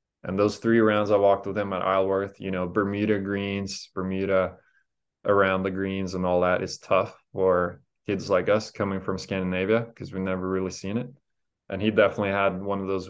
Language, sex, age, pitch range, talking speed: English, male, 20-39, 95-100 Hz, 195 wpm